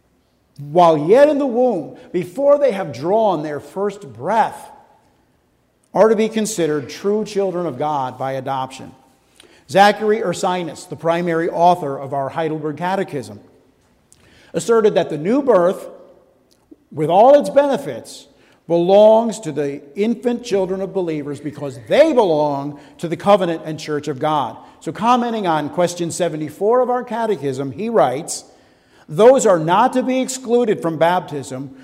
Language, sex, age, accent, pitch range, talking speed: English, male, 50-69, American, 155-225 Hz, 140 wpm